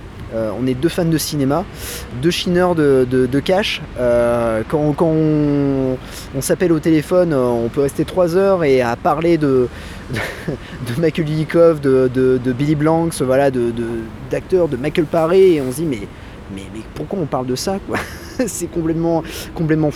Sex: male